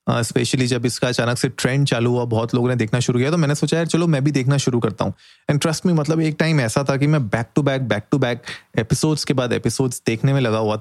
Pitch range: 120-150 Hz